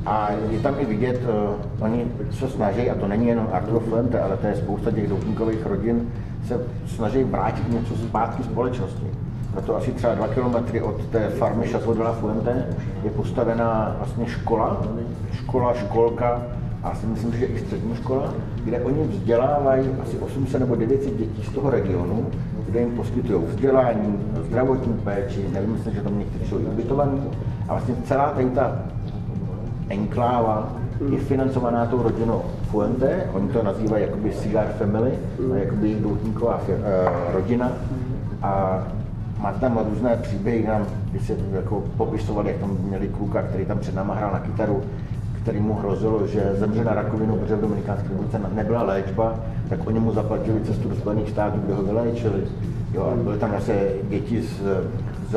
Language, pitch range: Czech, 105-120 Hz